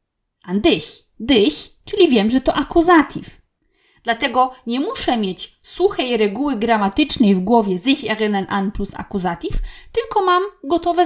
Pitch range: 210-315 Hz